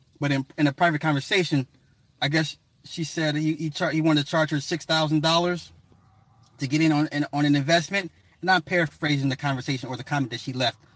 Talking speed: 205 wpm